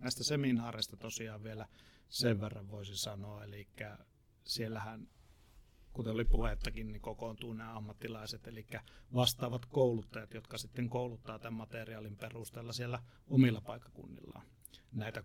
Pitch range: 110-125 Hz